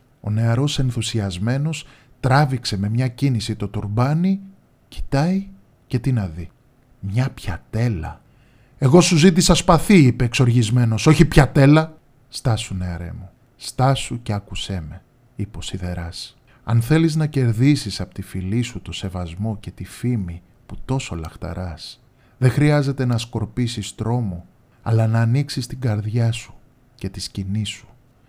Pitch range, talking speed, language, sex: 110-135 Hz, 140 wpm, Greek, male